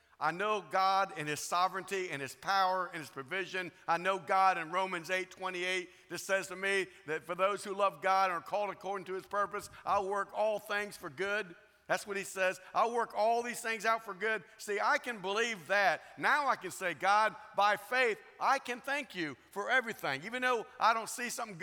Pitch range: 145-195 Hz